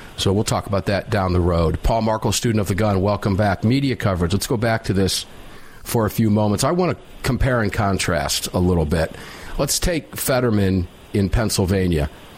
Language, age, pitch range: English, 50-69, 105-140 Hz